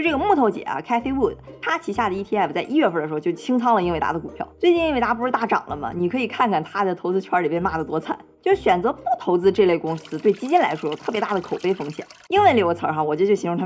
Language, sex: Chinese, female